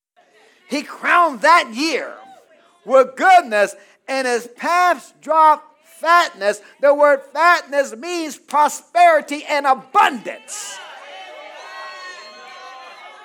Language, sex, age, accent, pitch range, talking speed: English, male, 40-59, American, 265-360 Hz, 80 wpm